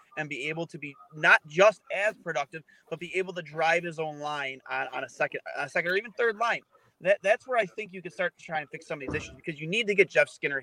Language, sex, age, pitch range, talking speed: English, male, 30-49, 150-185 Hz, 290 wpm